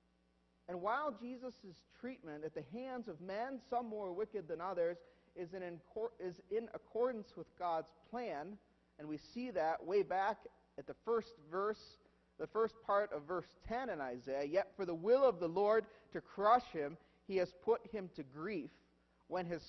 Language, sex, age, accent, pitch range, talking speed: English, male, 40-59, American, 150-240 Hz, 185 wpm